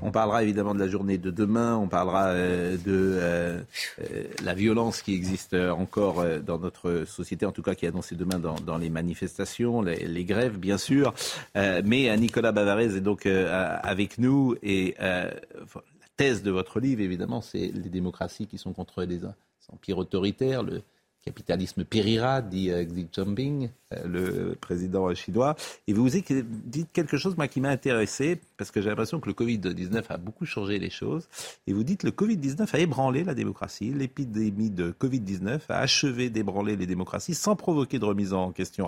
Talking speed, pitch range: 175 wpm, 95-130 Hz